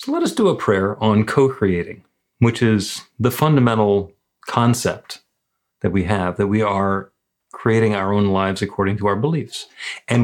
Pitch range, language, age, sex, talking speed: 100-125 Hz, English, 40-59, male, 165 wpm